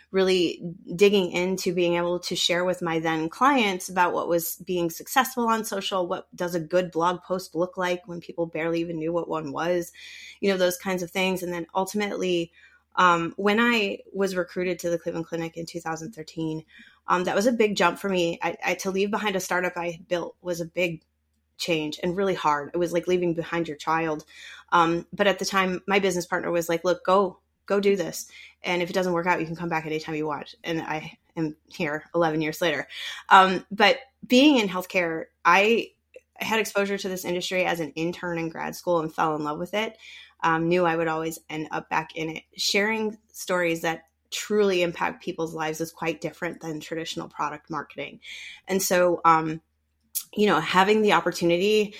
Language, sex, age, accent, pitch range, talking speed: English, female, 20-39, American, 165-190 Hz, 205 wpm